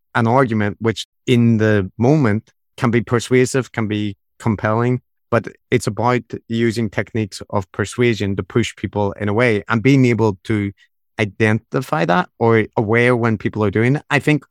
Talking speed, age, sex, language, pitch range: 165 wpm, 30-49, male, English, 105-120 Hz